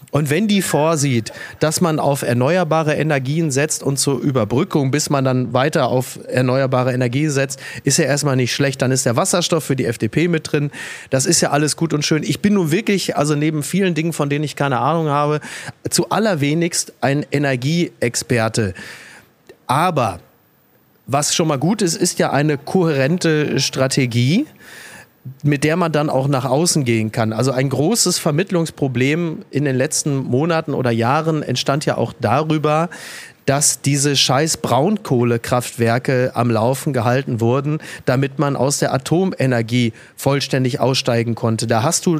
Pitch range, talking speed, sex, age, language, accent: 130-155 Hz, 160 wpm, male, 30-49, German, German